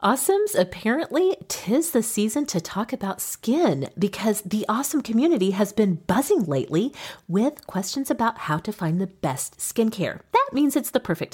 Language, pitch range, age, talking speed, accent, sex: English, 170-265 Hz, 40-59, 160 wpm, American, female